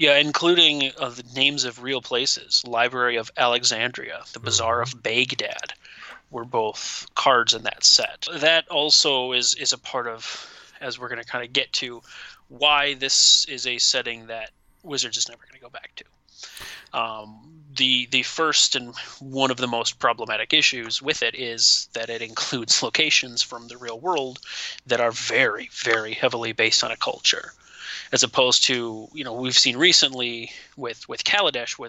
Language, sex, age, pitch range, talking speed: English, male, 30-49, 120-140 Hz, 175 wpm